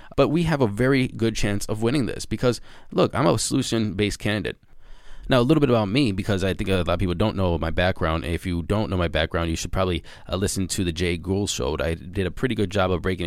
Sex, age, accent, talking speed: male, 20-39, American, 260 wpm